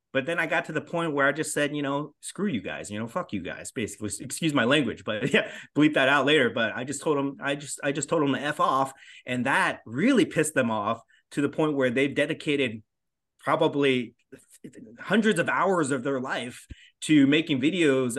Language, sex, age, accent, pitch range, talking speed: English, male, 30-49, American, 125-150 Hz, 220 wpm